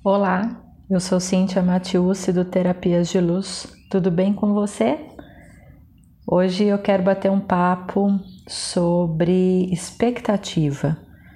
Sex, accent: female, Brazilian